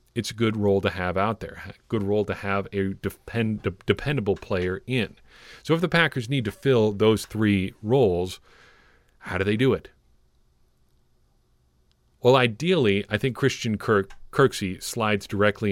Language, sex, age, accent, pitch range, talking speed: English, male, 40-59, American, 90-110 Hz, 160 wpm